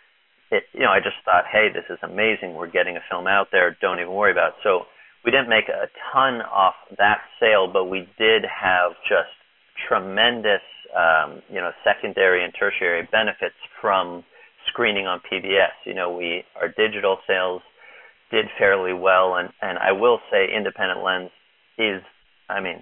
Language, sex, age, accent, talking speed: English, male, 40-59, American, 175 wpm